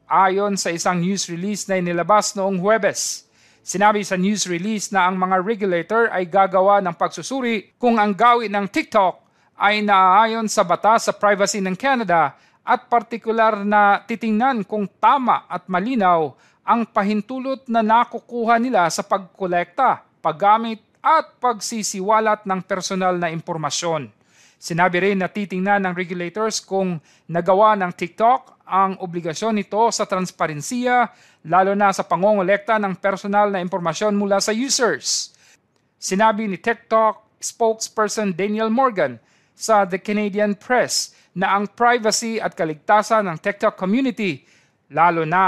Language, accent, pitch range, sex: Filipino, native, 185-220 Hz, male